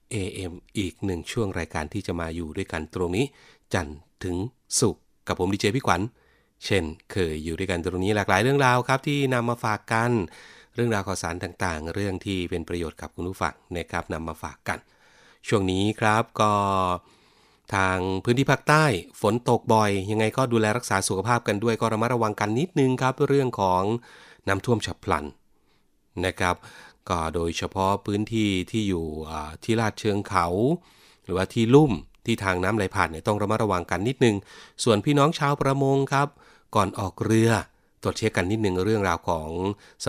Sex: male